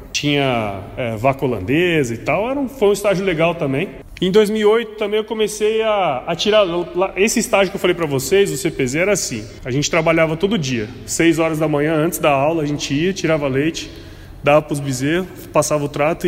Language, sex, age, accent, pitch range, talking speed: Portuguese, male, 20-39, Brazilian, 150-210 Hz, 205 wpm